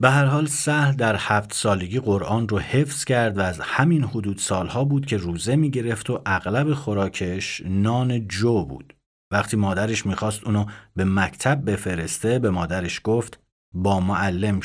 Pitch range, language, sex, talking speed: 95-125 Hz, Persian, male, 155 wpm